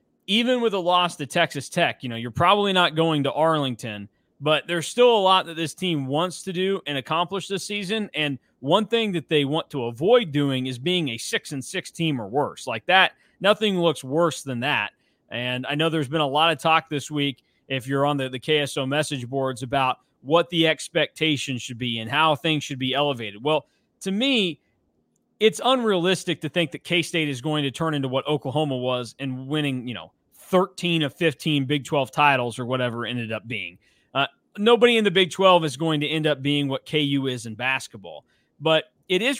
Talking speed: 210 wpm